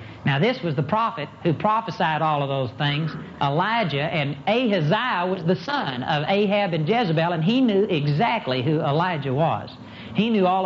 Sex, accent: male, American